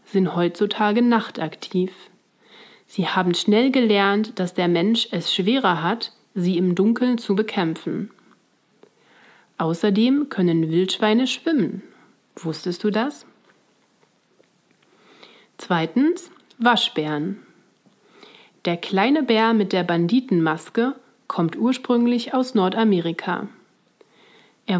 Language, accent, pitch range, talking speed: German, German, 180-230 Hz, 90 wpm